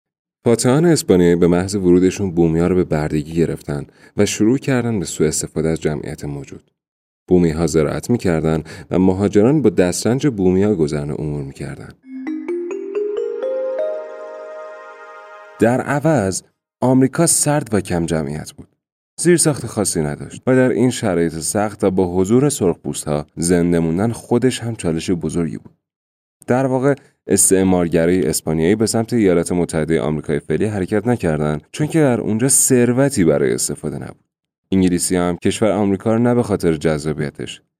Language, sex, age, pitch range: Persian, male, 30-49, 80-125 Hz